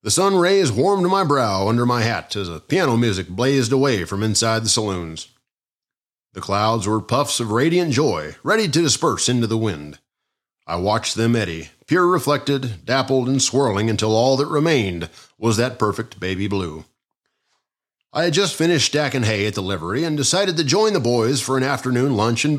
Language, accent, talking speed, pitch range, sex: English, American, 185 wpm, 105-145 Hz, male